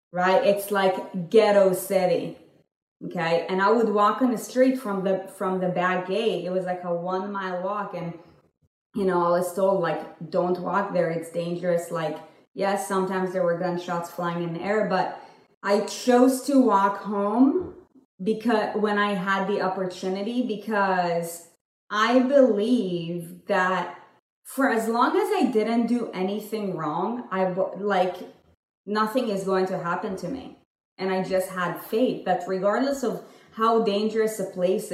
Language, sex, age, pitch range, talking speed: English, female, 20-39, 185-225 Hz, 160 wpm